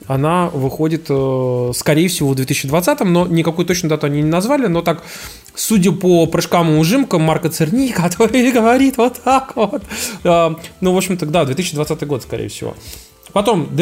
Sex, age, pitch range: male, 20-39, 135-175 Hz